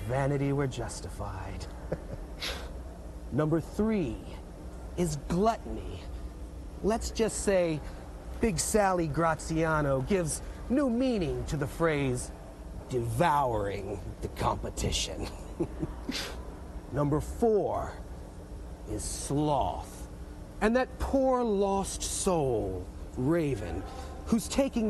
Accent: American